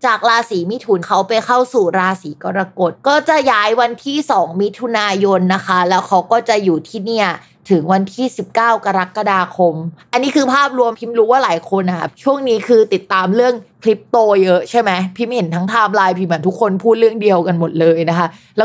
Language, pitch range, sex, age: Thai, 185-245 Hz, female, 20-39